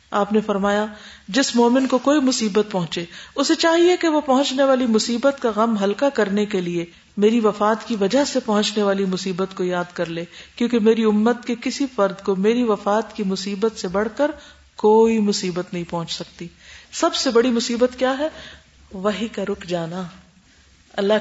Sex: female